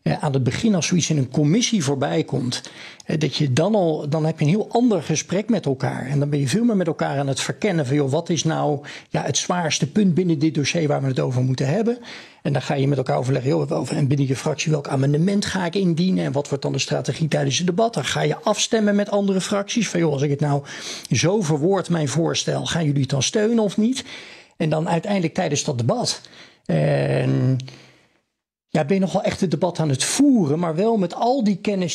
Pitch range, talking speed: 145-195 Hz, 235 wpm